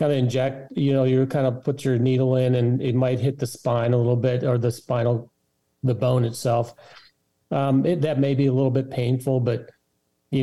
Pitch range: 115-130 Hz